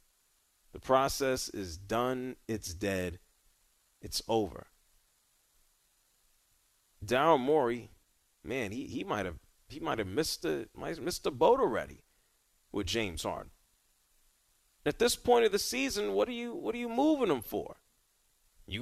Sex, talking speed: male, 135 wpm